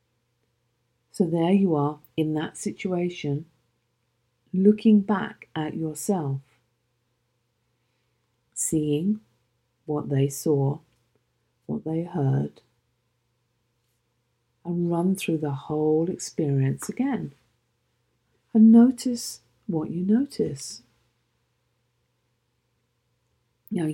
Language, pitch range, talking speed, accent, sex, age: English, 120-155 Hz, 80 wpm, British, female, 50-69